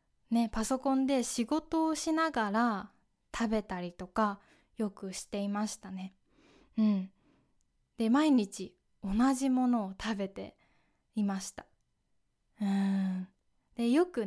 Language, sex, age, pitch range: Japanese, female, 20-39, 205-265 Hz